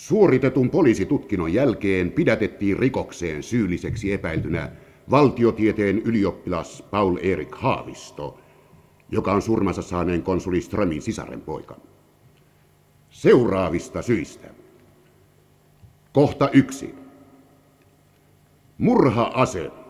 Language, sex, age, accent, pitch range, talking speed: Finnish, male, 60-79, native, 95-135 Hz, 70 wpm